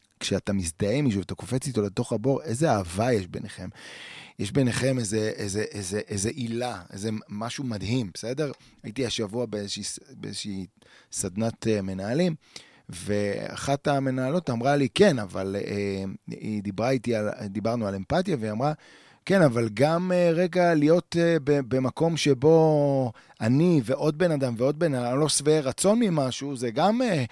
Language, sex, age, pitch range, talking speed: Hebrew, male, 30-49, 105-140 Hz, 145 wpm